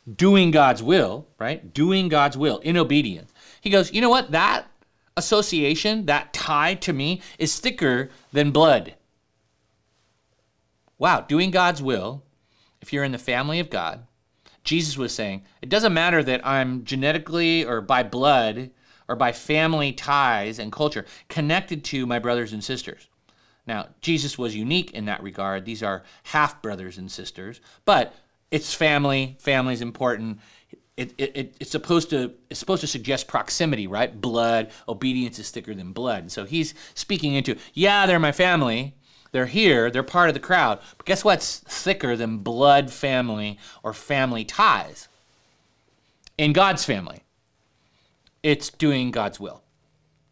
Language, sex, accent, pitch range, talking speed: English, male, American, 120-165 Hz, 155 wpm